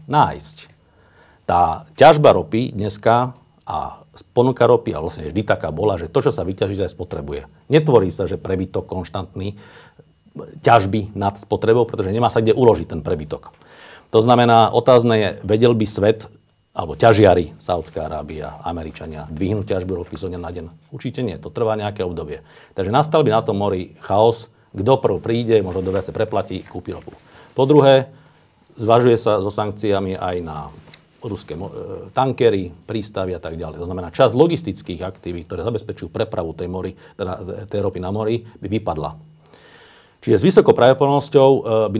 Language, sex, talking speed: Slovak, male, 160 wpm